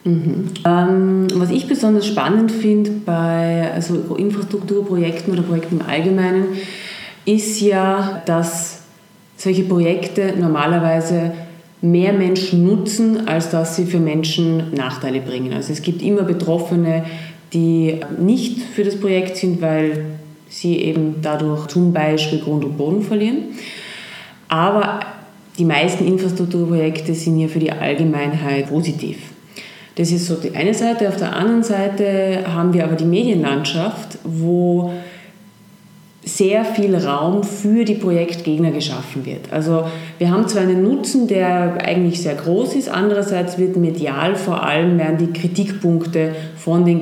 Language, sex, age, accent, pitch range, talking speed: German, female, 30-49, German, 165-195 Hz, 135 wpm